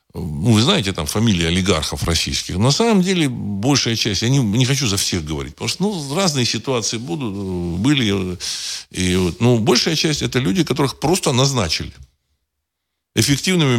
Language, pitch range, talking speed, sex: Russian, 85-130 Hz, 160 wpm, male